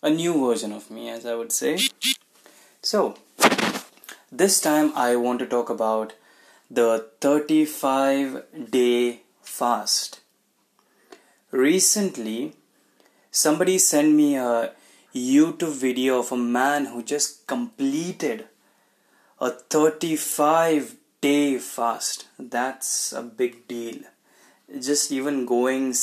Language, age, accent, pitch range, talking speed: Hindi, 20-39, native, 120-145 Hz, 105 wpm